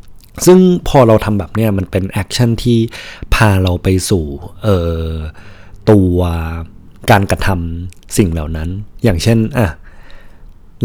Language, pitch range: Thai, 85-110 Hz